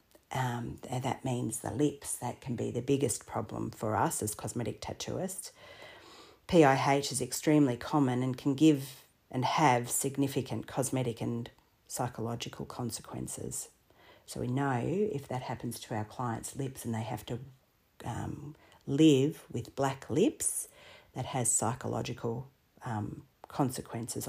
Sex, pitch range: female, 125-145 Hz